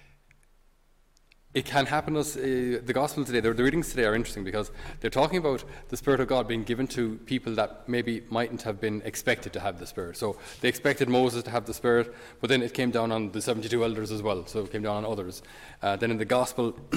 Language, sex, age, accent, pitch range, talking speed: English, male, 30-49, Irish, 110-130 Hz, 230 wpm